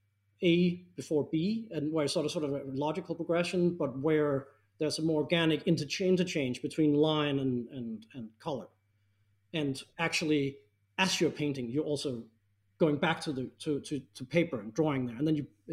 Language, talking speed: English, 185 wpm